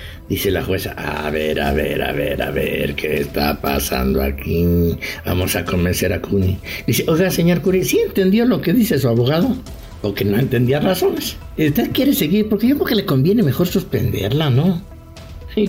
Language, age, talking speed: English, 60-79, 185 wpm